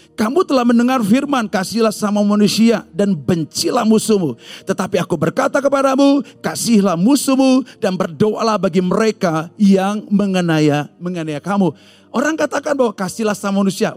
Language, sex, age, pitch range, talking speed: Indonesian, male, 40-59, 170-225 Hz, 125 wpm